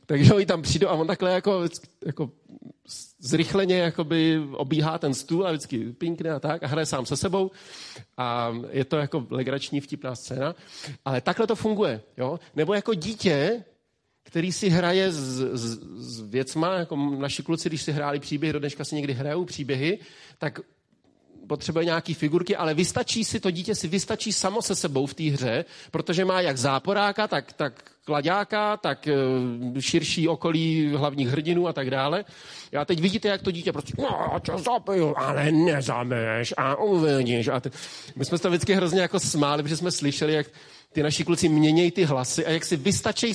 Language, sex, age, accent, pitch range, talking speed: Czech, male, 40-59, native, 145-185 Hz, 175 wpm